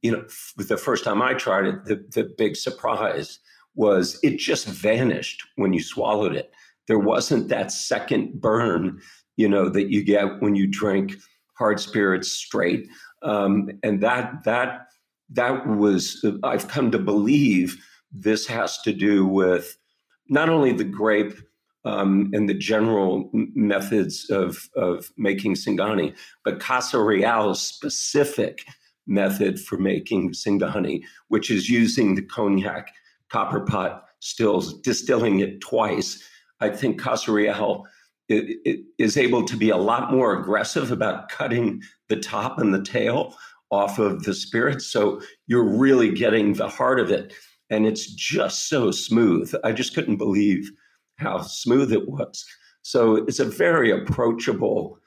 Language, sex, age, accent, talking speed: English, male, 50-69, American, 145 wpm